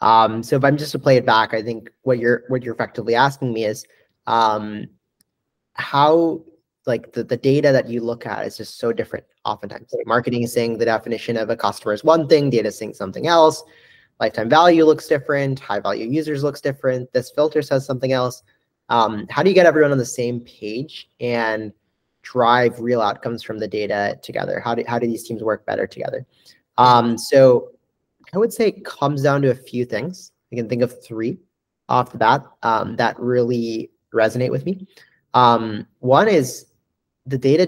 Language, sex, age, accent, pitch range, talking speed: English, male, 30-49, American, 115-140 Hz, 195 wpm